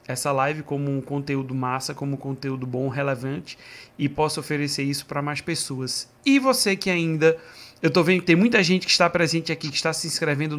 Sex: male